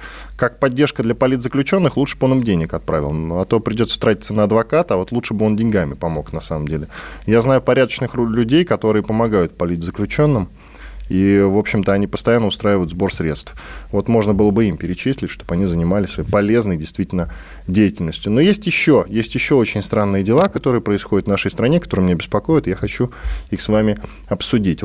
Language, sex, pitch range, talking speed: Russian, male, 95-120 Hz, 185 wpm